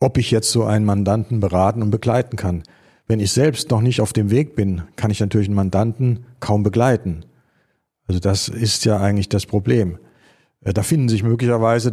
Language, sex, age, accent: German, male, 50-69, German